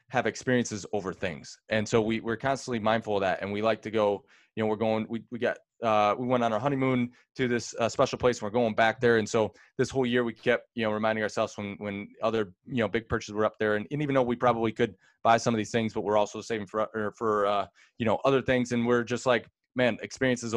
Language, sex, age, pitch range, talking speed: English, male, 20-39, 105-120 Hz, 265 wpm